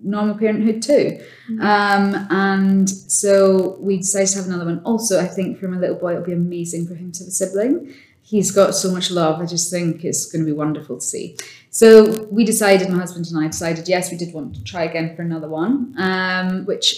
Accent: British